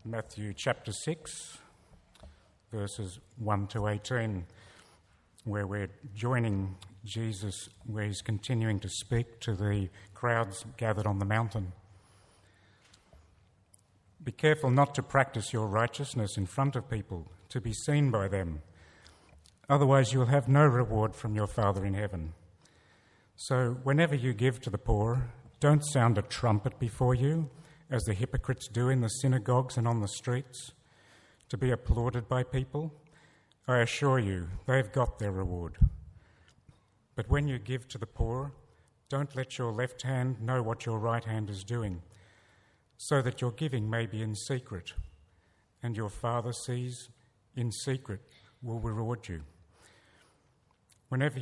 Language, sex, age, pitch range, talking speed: English, male, 60-79, 100-125 Hz, 145 wpm